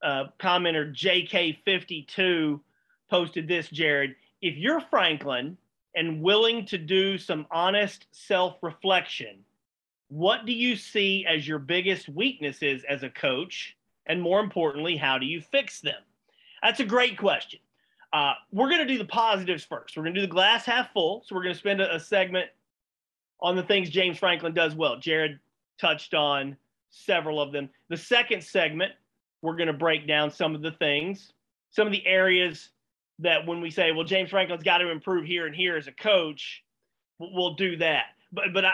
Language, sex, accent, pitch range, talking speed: English, male, American, 150-195 Hz, 175 wpm